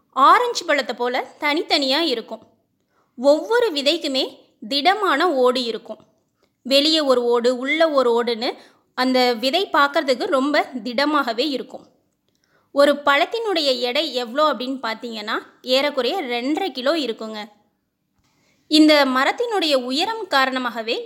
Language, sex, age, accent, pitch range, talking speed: Tamil, female, 20-39, native, 250-315 Hz, 105 wpm